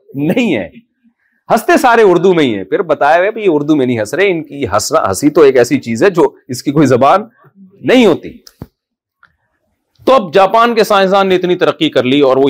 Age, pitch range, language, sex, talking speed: 40-59, 135-180 Hz, Urdu, male, 215 wpm